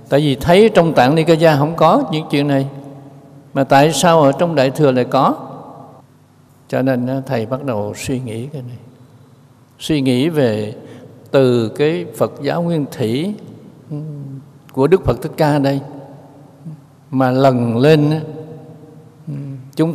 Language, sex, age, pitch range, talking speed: Vietnamese, male, 60-79, 130-160 Hz, 145 wpm